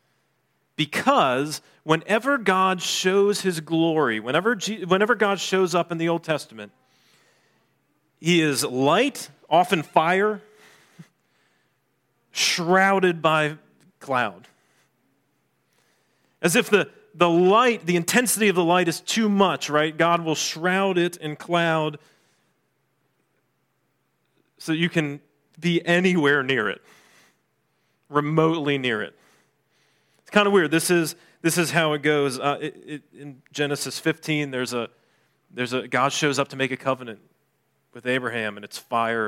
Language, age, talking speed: English, 40-59, 135 wpm